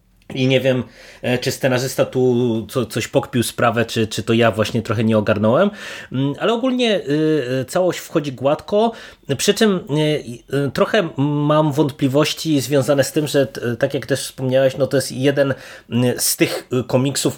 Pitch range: 115-145 Hz